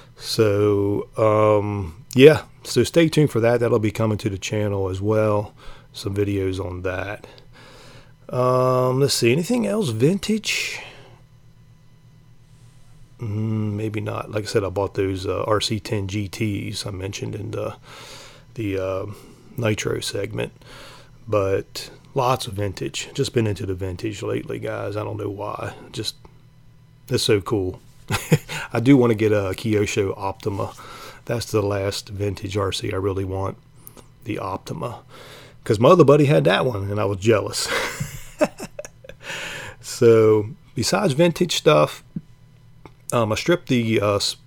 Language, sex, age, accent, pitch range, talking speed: English, male, 30-49, American, 105-130 Hz, 140 wpm